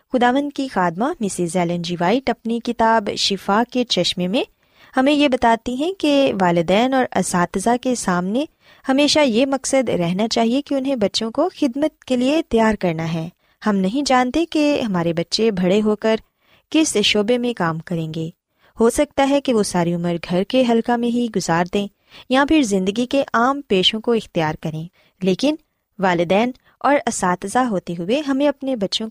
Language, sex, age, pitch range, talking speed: Urdu, female, 20-39, 185-270 Hz, 175 wpm